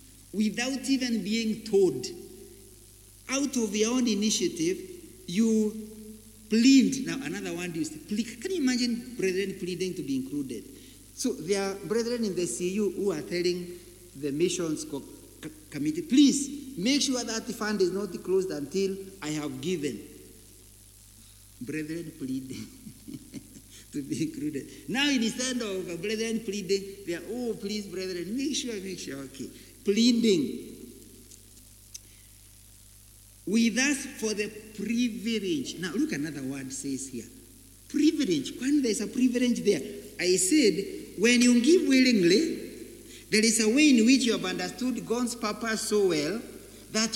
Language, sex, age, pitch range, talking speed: English, male, 60-79, 175-245 Hz, 140 wpm